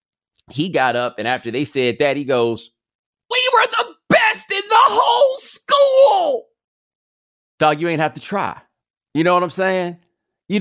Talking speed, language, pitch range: 170 wpm, English, 115-190 Hz